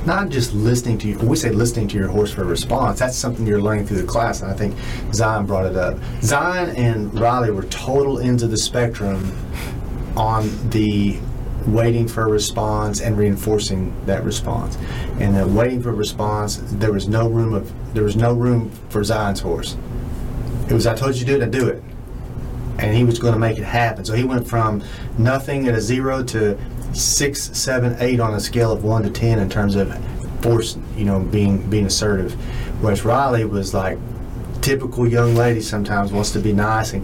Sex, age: male, 30-49